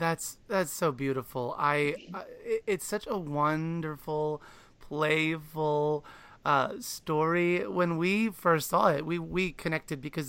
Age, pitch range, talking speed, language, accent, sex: 30-49, 140-195 Hz, 130 wpm, English, American, male